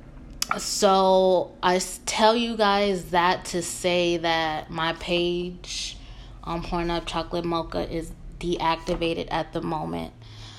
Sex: female